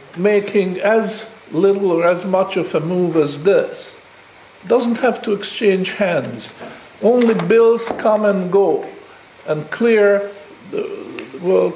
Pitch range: 185-240 Hz